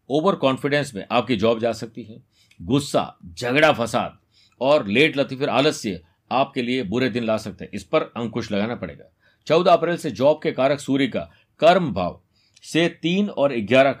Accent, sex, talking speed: native, male, 175 wpm